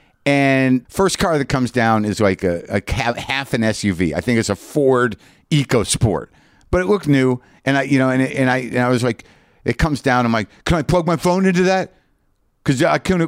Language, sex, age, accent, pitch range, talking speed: English, male, 50-69, American, 105-150 Hz, 220 wpm